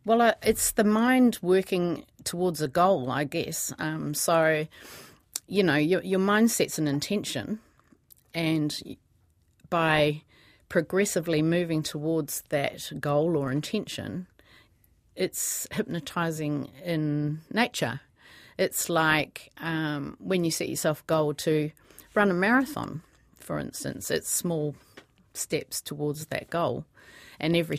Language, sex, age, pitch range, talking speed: English, female, 40-59, 140-170 Hz, 120 wpm